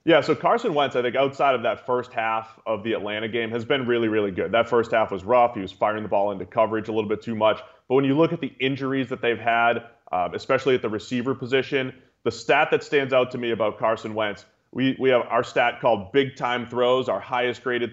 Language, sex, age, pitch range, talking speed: English, male, 30-49, 115-135 Hz, 245 wpm